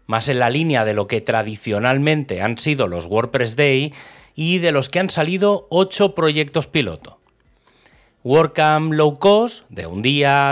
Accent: Spanish